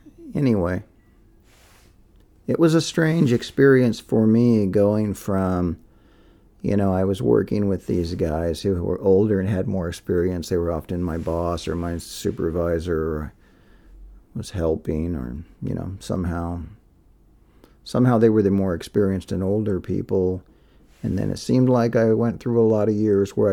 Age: 50-69